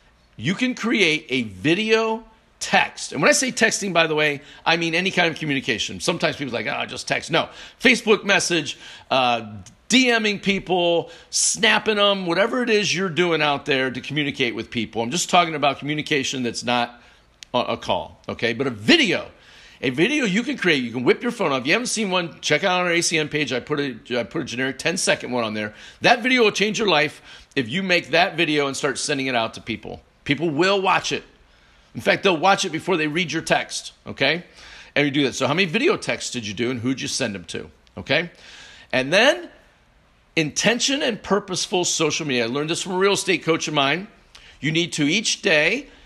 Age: 50-69